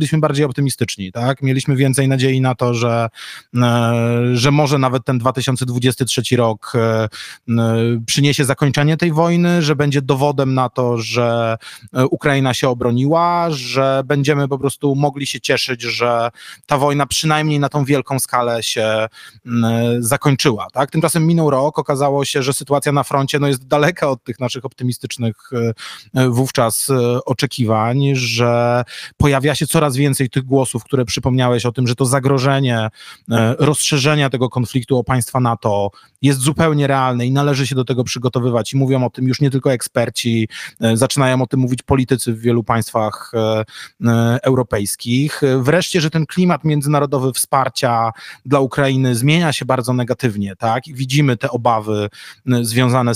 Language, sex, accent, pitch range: Polish, male, native, 120-140 Hz